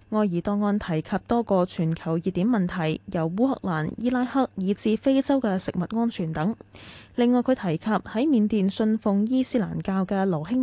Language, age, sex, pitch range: Chinese, 10-29, female, 170-225 Hz